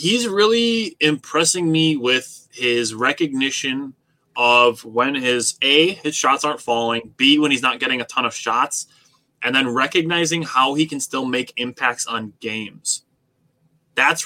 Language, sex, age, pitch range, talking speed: English, male, 20-39, 120-160 Hz, 150 wpm